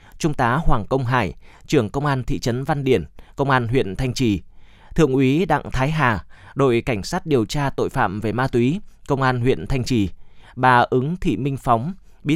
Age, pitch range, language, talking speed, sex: 20-39, 115-145 Hz, Vietnamese, 210 wpm, male